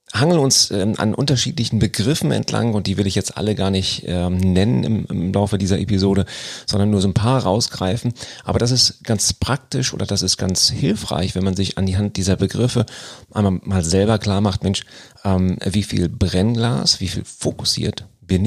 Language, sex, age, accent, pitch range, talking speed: German, male, 40-59, German, 95-115 Hz, 180 wpm